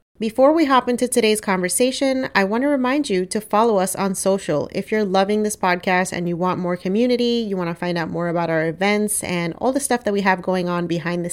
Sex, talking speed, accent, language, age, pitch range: female, 245 wpm, American, English, 30-49, 175-220 Hz